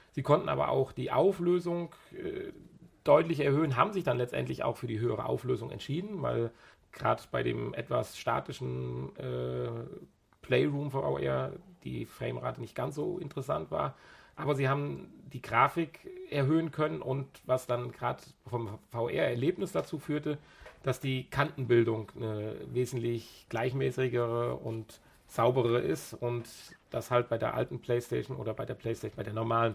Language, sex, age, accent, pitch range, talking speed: German, male, 40-59, German, 110-135 Hz, 145 wpm